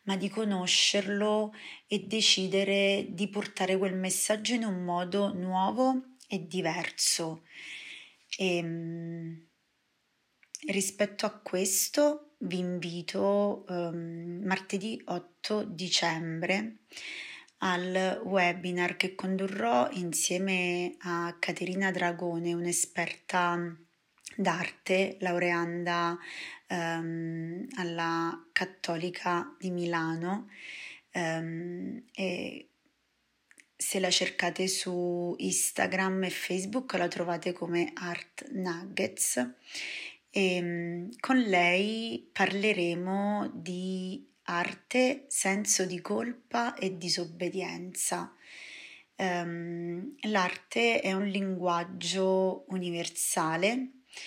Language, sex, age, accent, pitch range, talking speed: Italian, female, 20-39, native, 175-200 Hz, 80 wpm